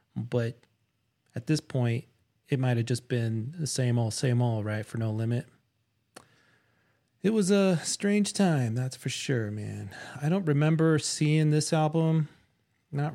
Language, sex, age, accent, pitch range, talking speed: English, male, 30-49, American, 120-150 Hz, 155 wpm